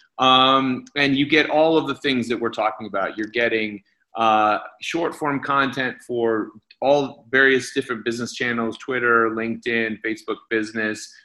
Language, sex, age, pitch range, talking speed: English, male, 30-49, 110-140 Hz, 150 wpm